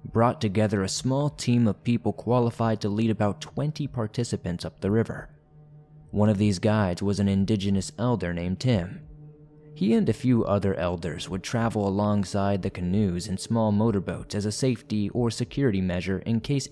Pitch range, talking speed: 95-125 Hz, 170 wpm